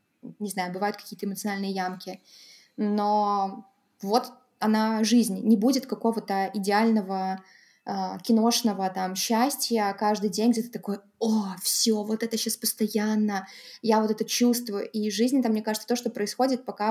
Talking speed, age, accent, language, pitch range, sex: 145 wpm, 20-39, native, Russian, 205-235 Hz, female